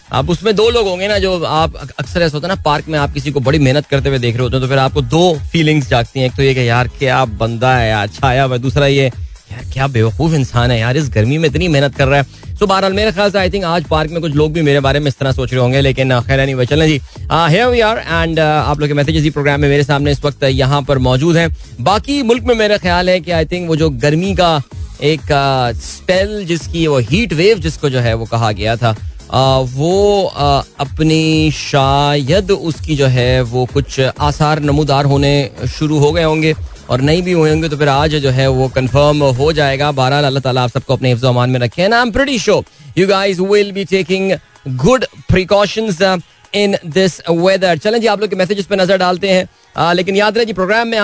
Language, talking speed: Hindi, 215 wpm